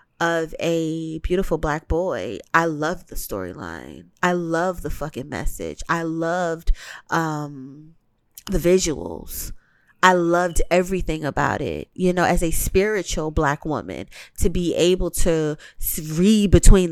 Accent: American